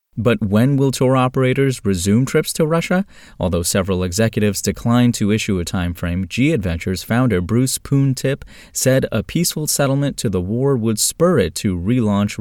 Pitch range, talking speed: 95-125 Hz, 170 wpm